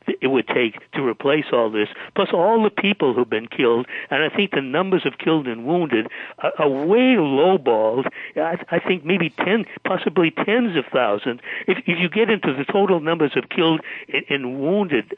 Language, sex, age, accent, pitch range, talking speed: English, male, 60-79, American, 120-170 Hz, 200 wpm